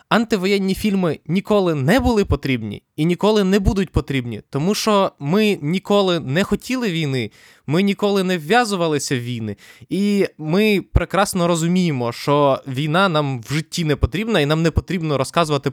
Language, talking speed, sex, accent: Ukrainian, 155 wpm, male, native